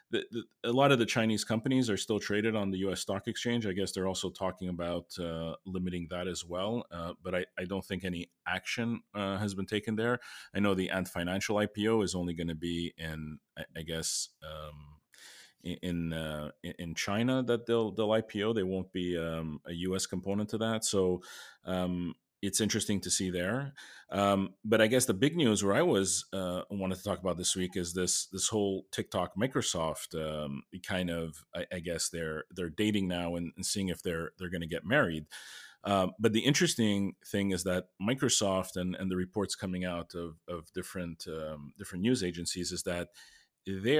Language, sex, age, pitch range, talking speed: English, male, 30-49, 85-105 Hz, 200 wpm